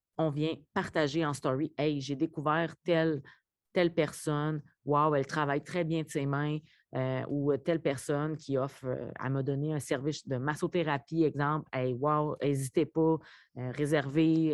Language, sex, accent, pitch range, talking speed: French, female, Canadian, 130-155 Hz, 160 wpm